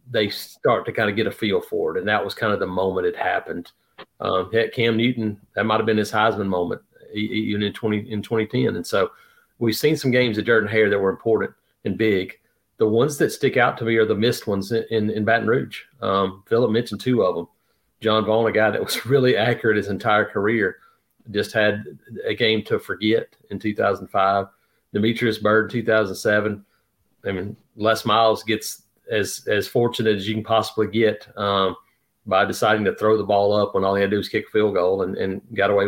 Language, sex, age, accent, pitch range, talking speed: English, male, 40-59, American, 100-115 Hz, 225 wpm